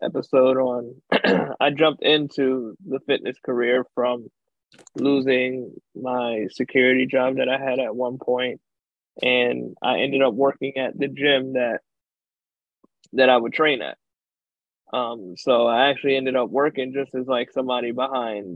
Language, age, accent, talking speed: English, 20-39, American, 145 wpm